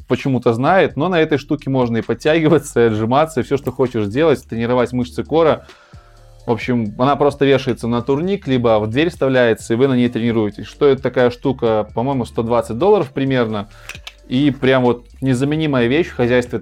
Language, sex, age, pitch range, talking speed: Russian, male, 20-39, 115-135 Hz, 180 wpm